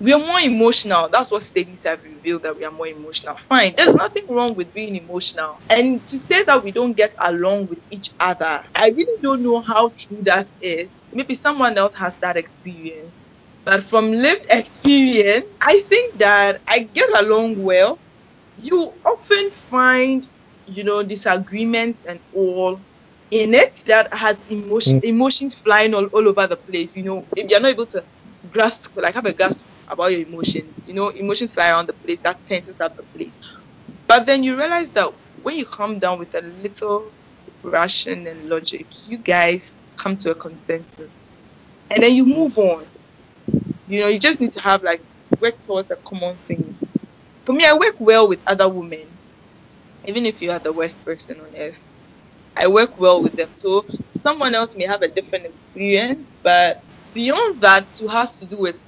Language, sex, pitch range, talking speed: English, female, 180-240 Hz, 185 wpm